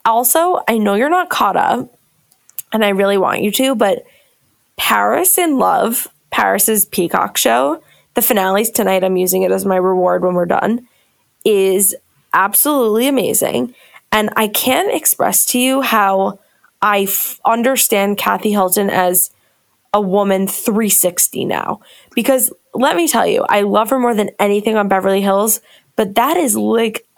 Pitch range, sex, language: 195-245 Hz, female, English